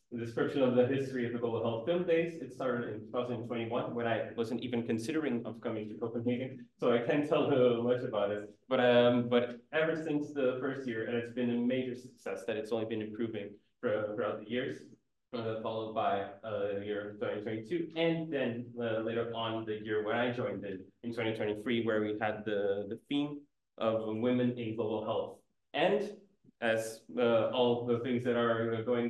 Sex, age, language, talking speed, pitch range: male, 20-39, Danish, 200 wpm, 110-130 Hz